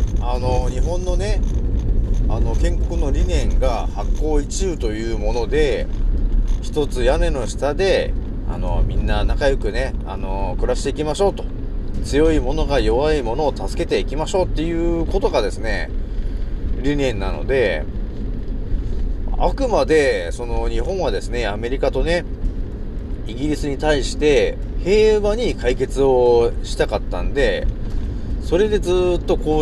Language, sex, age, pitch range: Japanese, male, 40-59, 100-155 Hz